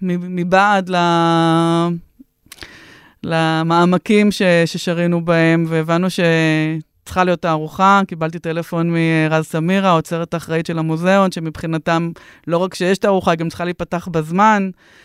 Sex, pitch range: female, 160-185 Hz